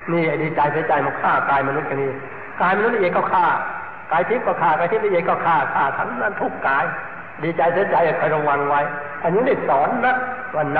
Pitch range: 145-180 Hz